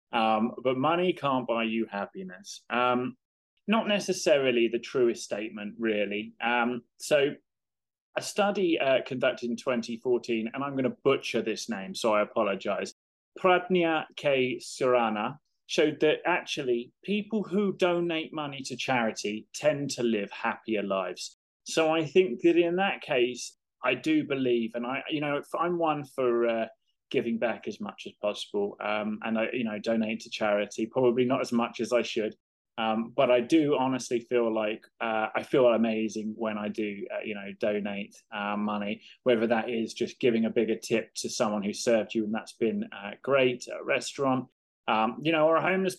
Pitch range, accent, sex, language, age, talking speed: 110-135 Hz, British, male, English, 20-39, 175 wpm